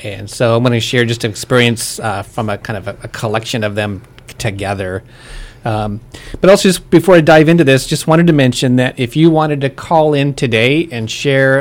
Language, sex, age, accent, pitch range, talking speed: English, male, 30-49, American, 110-135 Hz, 215 wpm